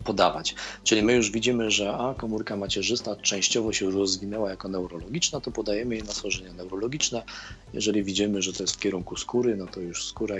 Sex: male